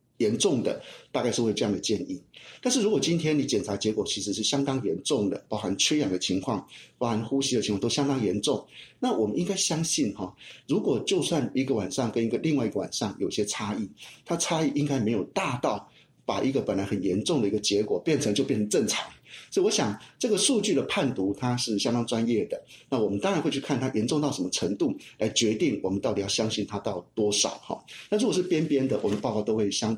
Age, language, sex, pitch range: 50-69, Chinese, male, 105-135 Hz